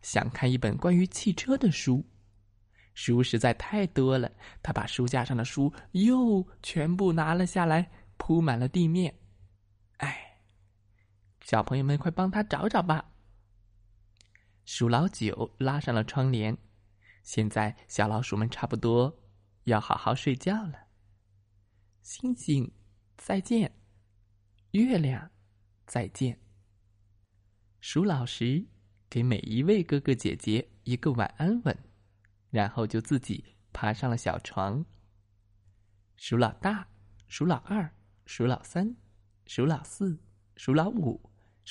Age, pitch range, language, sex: 20-39, 100-145 Hz, Chinese, male